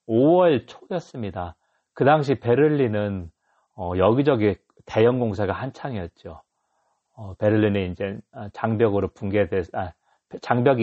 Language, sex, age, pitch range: Korean, male, 40-59, 100-130 Hz